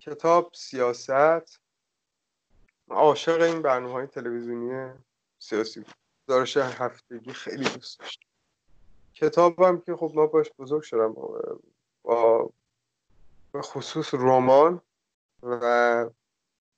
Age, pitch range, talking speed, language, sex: 30-49, 120-145 Hz, 80 wpm, Persian, male